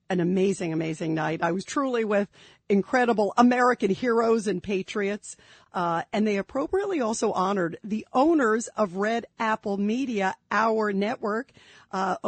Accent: American